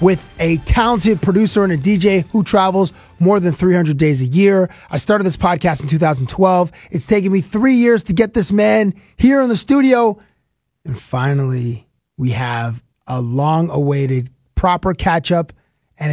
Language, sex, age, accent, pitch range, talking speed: English, male, 30-49, American, 135-165 Hz, 160 wpm